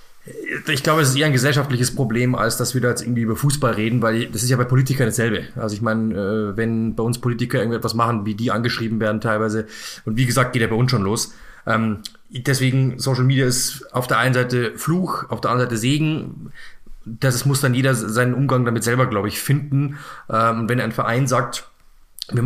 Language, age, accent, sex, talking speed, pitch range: German, 20-39, German, male, 210 wpm, 115-135 Hz